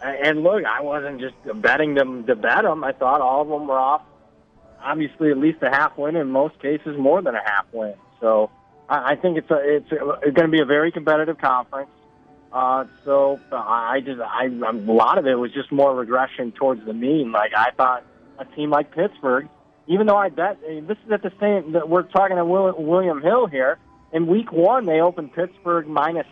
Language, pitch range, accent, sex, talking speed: English, 130-165 Hz, American, male, 215 wpm